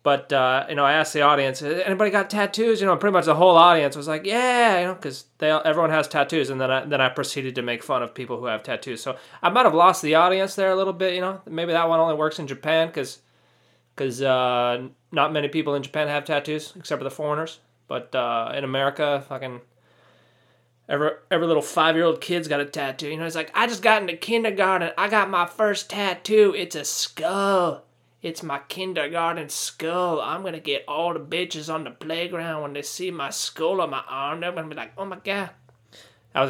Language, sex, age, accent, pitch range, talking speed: English, male, 20-39, American, 135-190 Hz, 220 wpm